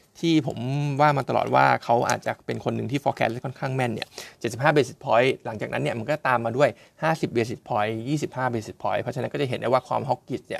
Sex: male